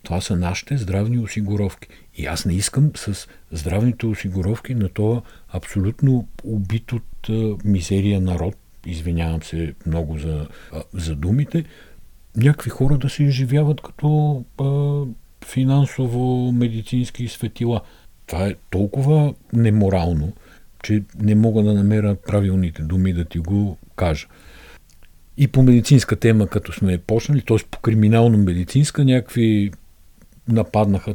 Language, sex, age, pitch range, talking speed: Bulgarian, male, 50-69, 90-120 Hz, 125 wpm